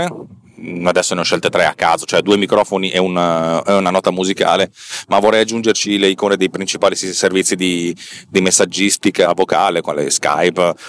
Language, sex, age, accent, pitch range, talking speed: Italian, male, 30-49, native, 90-115 Hz, 160 wpm